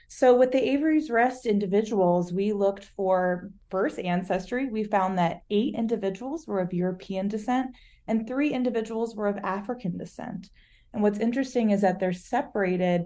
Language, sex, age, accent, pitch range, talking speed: English, female, 30-49, American, 185-225 Hz, 155 wpm